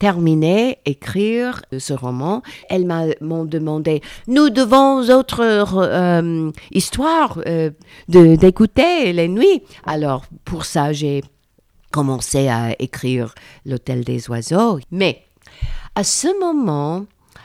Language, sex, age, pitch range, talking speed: French, female, 50-69, 135-200 Hz, 105 wpm